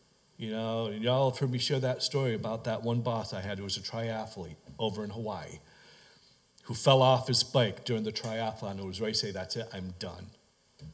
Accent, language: American, English